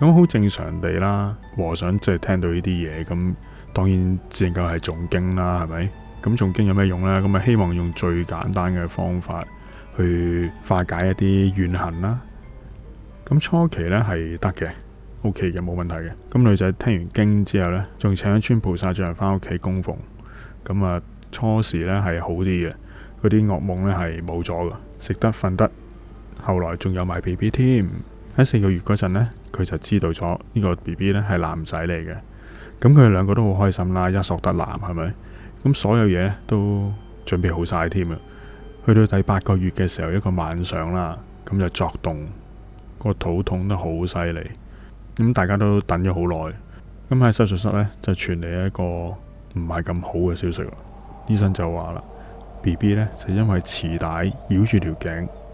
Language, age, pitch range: Chinese, 20-39, 85-105 Hz